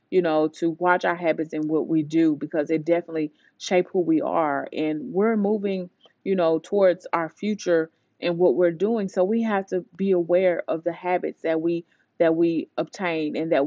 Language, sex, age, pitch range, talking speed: English, female, 30-49, 160-185 Hz, 200 wpm